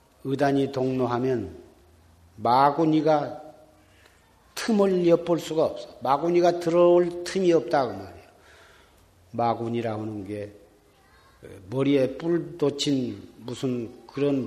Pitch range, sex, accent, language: 120-150 Hz, male, native, Korean